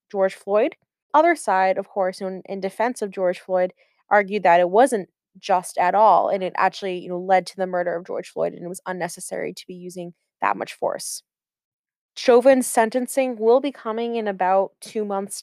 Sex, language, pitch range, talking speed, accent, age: female, English, 195-245 Hz, 195 wpm, American, 20-39